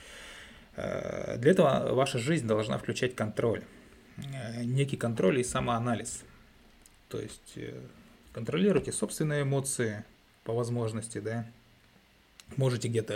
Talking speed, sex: 95 wpm, male